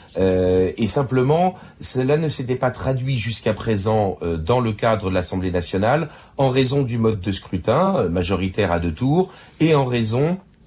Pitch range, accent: 95-125 Hz, French